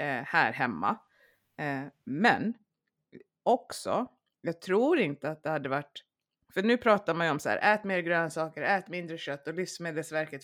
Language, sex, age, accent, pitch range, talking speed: Swedish, female, 20-39, native, 150-190 Hz, 155 wpm